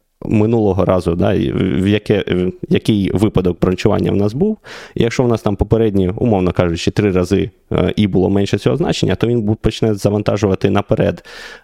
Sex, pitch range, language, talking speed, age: male, 90-110 Hz, Ukrainian, 160 wpm, 20-39